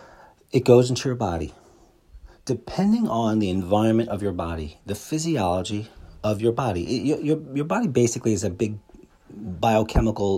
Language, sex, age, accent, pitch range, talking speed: English, male, 40-59, American, 95-135 Hz, 150 wpm